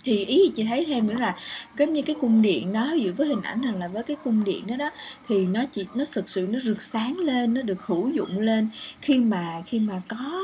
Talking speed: 270 wpm